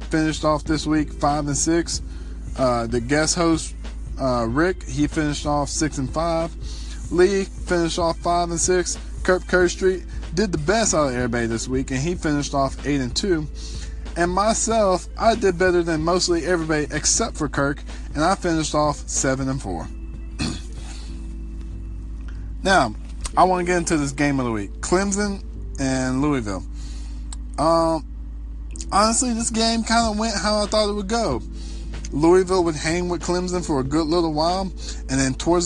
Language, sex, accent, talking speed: English, male, American, 170 wpm